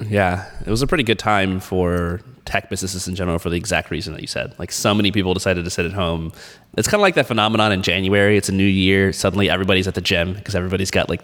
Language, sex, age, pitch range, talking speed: English, male, 20-39, 90-110 Hz, 260 wpm